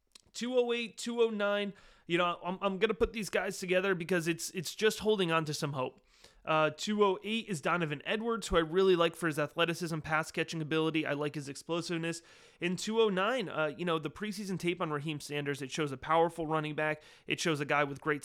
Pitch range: 145-180 Hz